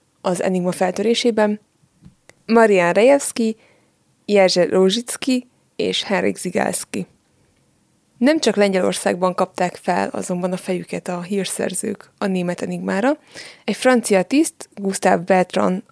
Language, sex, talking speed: Hungarian, female, 100 wpm